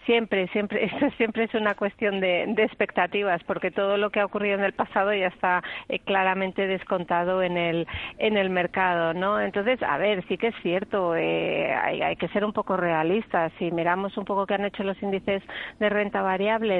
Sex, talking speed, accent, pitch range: female, 205 wpm, Spanish, 180-210 Hz